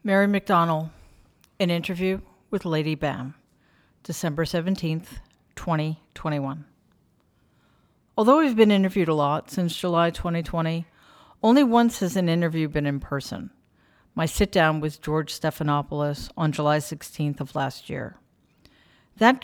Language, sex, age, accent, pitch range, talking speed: English, female, 50-69, American, 150-185 Hz, 125 wpm